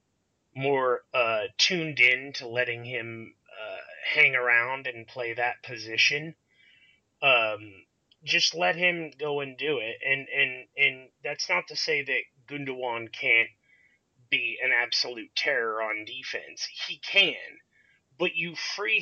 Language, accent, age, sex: English, American, 30-49, male